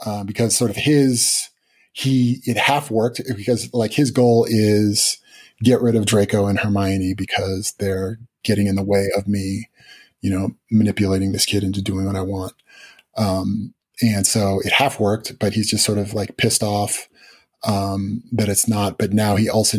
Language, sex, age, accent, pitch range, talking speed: English, male, 30-49, American, 100-115 Hz, 180 wpm